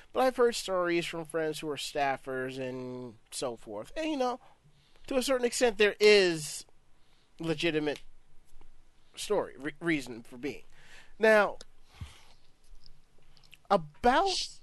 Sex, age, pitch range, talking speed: male, 30-49, 150-210 Hz, 120 wpm